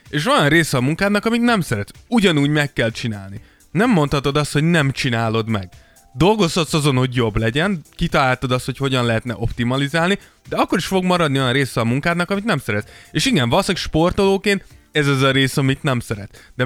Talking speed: 195 wpm